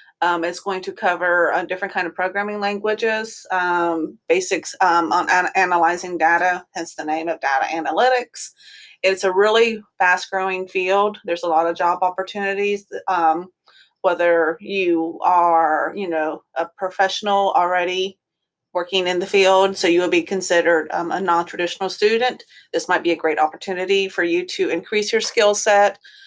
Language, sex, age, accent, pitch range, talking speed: English, female, 30-49, American, 175-215 Hz, 160 wpm